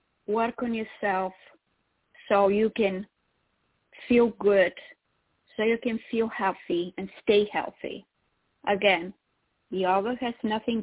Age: 30-49